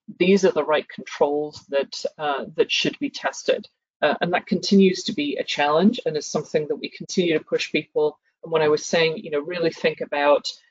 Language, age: German, 40-59